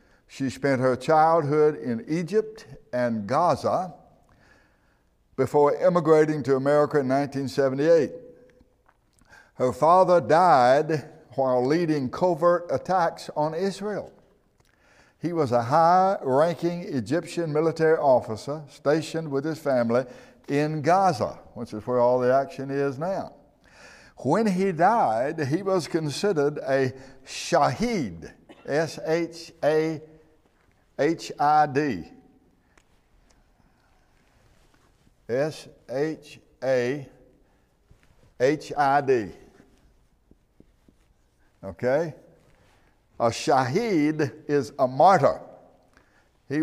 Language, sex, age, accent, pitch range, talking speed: English, male, 60-79, American, 130-160 Hz, 80 wpm